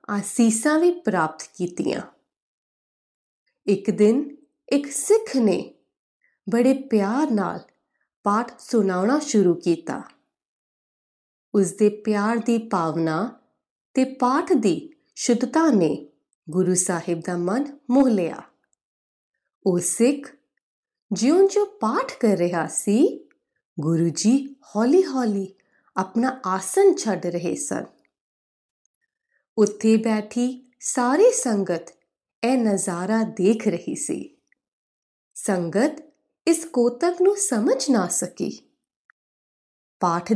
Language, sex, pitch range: Punjabi, female, 190-290 Hz